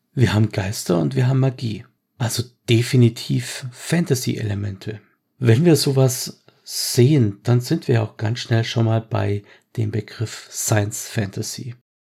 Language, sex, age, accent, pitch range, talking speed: German, male, 50-69, German, 110-125 Hz, 130 wpm